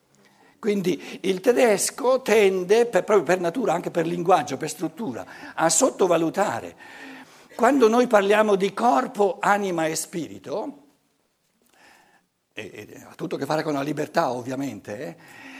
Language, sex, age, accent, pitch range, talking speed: Italian, male, 60-79, native, 170-215 Hz, 130 wpm